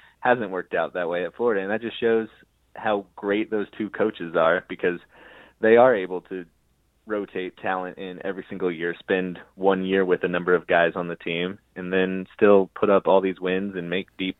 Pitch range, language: 90-105 Hz, English